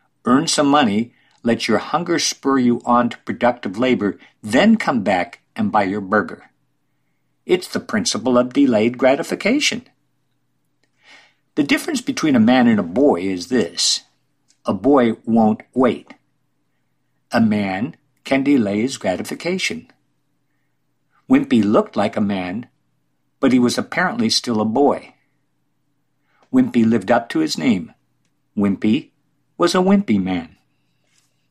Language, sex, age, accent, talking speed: English, male, 50-69, American, 130 wpm